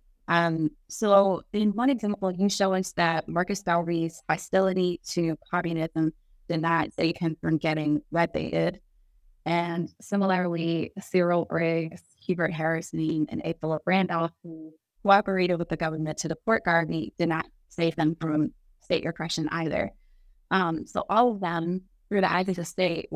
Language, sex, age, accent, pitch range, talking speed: English, female, 20-39, American, 160-185 Hz, 150 wpm